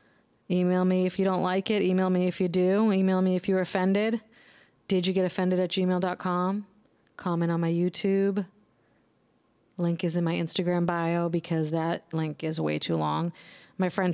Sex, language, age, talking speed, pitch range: female, English, 20-39, 180 wpm, 165-185 Hz